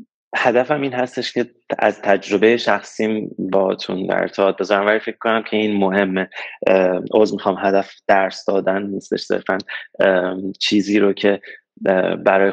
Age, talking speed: 20-39, 135 wpm